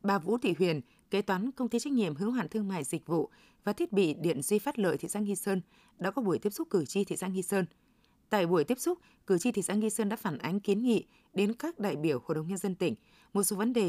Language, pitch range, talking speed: Vietnamese, 185-230 Hz, 285 wpm